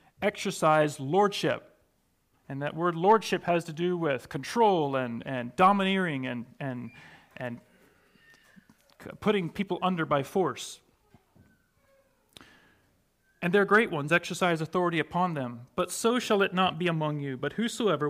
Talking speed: 135 wpm